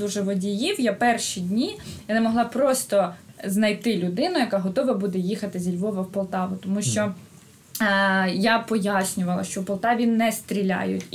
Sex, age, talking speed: female, 20-39, 150 wpm